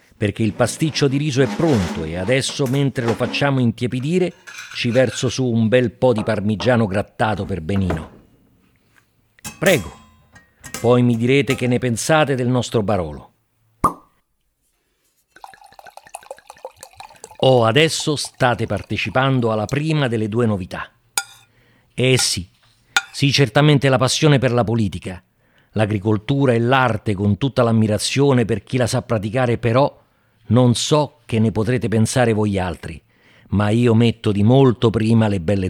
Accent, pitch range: native, 105-135 Hz